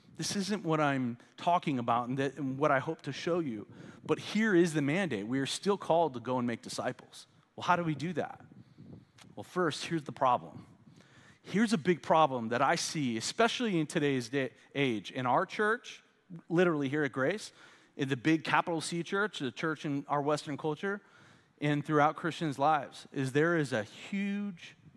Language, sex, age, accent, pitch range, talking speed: English, male, 30-49, American, 135-180 Hz, 185 wpm